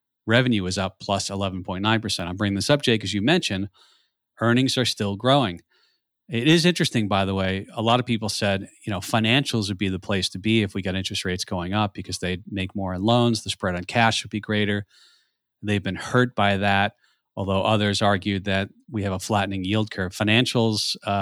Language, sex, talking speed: English, male, 210 wpm